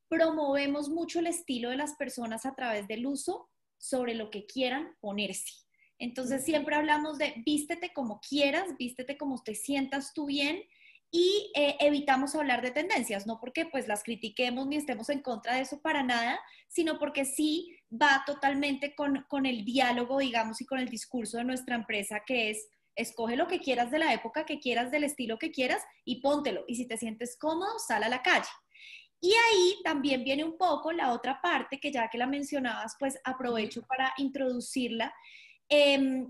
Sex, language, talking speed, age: female, English, 180 wpm, 20-39